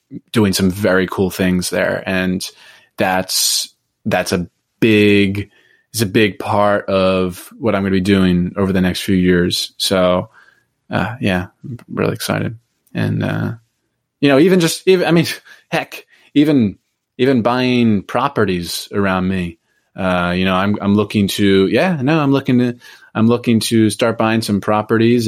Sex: male